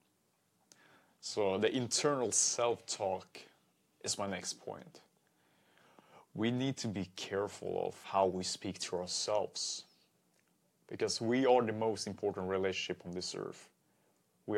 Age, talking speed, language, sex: 30-49, 125 wpm, English, male